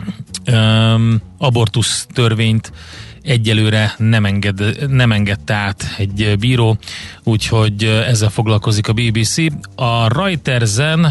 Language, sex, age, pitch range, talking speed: Hungarian, male, 30-49, 105-120 Hz, 105 wpm